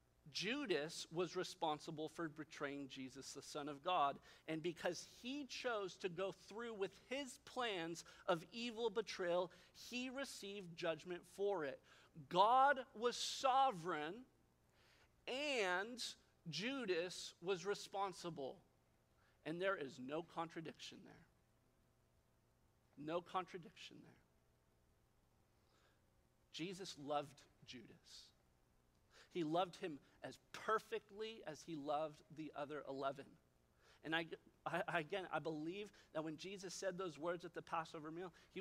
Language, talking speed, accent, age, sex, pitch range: English, 115 wpm, American, 50-69, male, 145-190 Hz